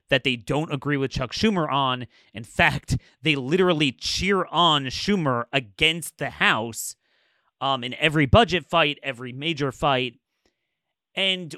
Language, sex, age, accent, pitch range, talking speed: English, male, 30-49, American, 130-215 Hz, 140 wpm